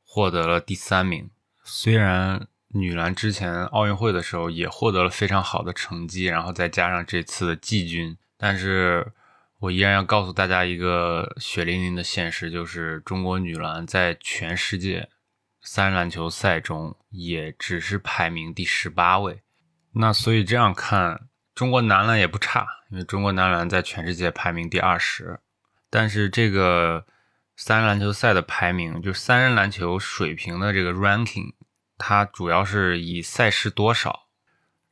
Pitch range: 85-105 Hz